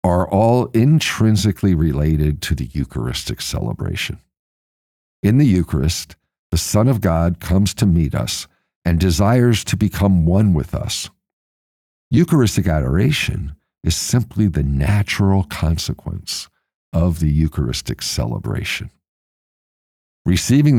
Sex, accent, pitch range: male, American, 80-105 Hz